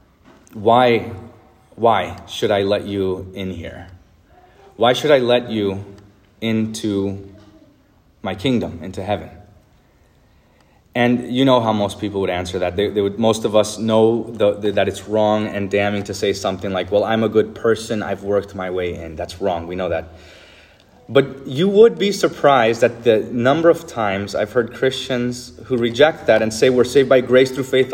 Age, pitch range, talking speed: 30-49, 100-160 Hz, 180 wpm